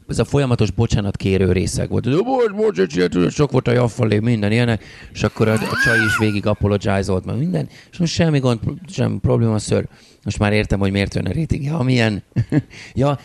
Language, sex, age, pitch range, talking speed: Hungarian, male, 30-49, 100-120 Hz, 190 wpm